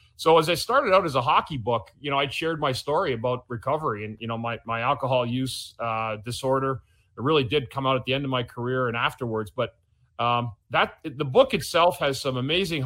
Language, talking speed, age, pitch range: English, 225 wpm, 30-49, 115-140 Hz